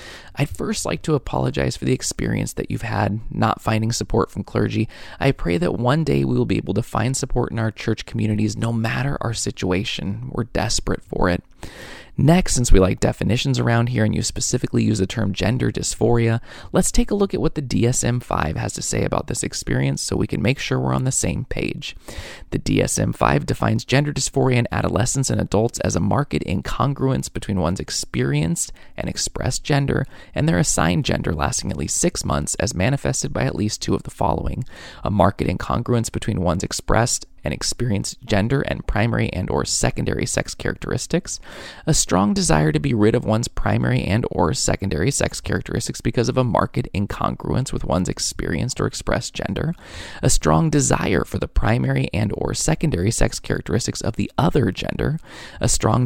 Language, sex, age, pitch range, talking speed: English, male, 20-39, 95-130 Hz, 185 wpm